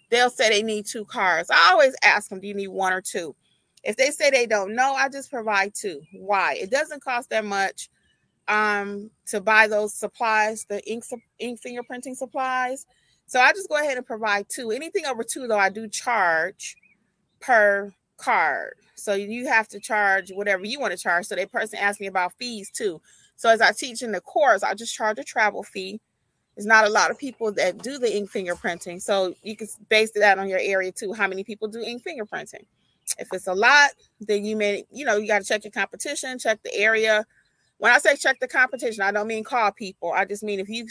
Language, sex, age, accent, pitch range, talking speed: English, female, 30-49, American, 195-240 Hz, 220 wpm